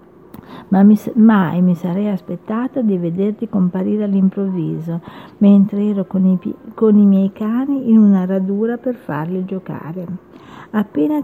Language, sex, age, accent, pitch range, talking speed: Italian, female, 50-69, native, 185-225 Hz, 125 wpm